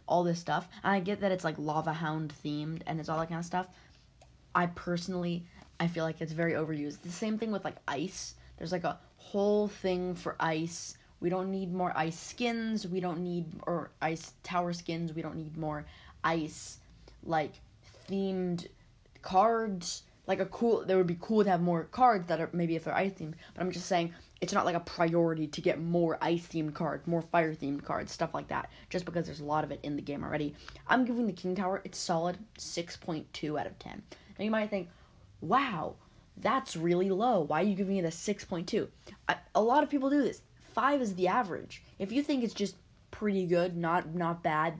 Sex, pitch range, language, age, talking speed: female, 160-200 Hz, English, 20-39, 210 wpm